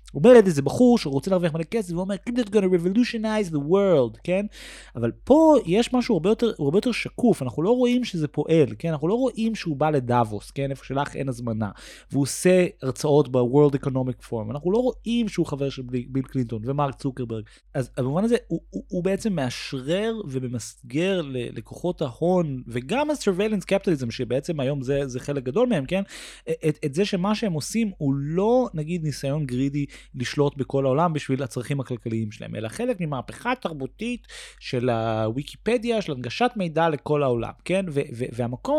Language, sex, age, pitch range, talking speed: Hebrew, male, 30-49, 135-205 Hz, 175 wpm